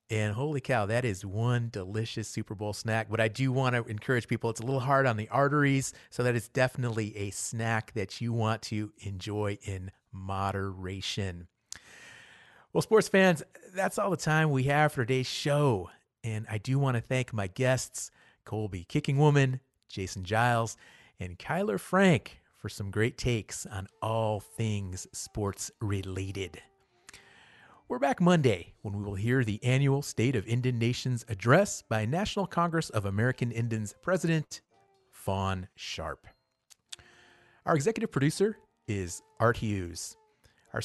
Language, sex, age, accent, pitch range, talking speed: English, male, 30-49, American, 100-140 Hz, 155 wpm